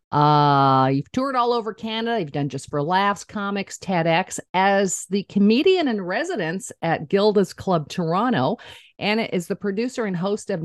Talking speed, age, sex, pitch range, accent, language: 165 wpm, 50-69, female, 150-210 Hz, American, English